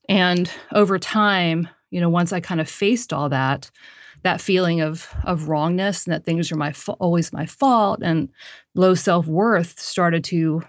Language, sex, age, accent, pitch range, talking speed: English, female, 30-49, American, 160-185 Hz, 180 wpm